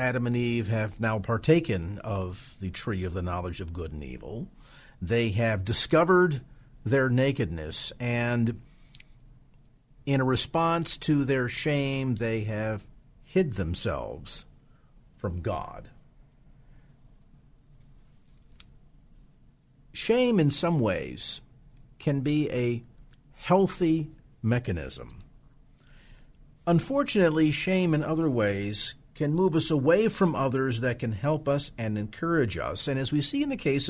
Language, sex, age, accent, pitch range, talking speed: English, male, 50-69, American, 110-145 Hz, 120 wpm